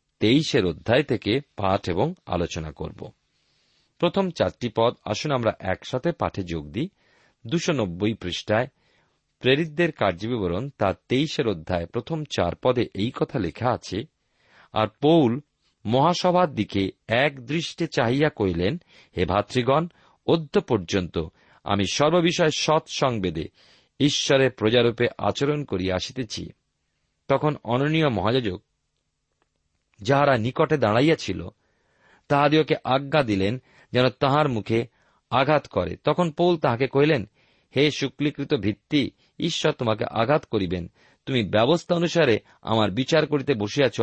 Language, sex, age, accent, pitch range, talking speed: Bengali, male, 40-59, native, 100-145 Hz, 110 wpm